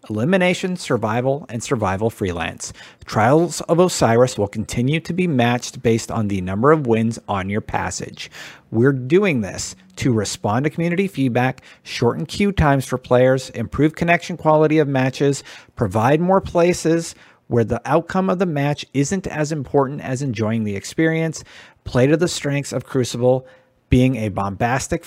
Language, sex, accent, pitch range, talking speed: English, male, American, 110-155 Hz, 155 wpm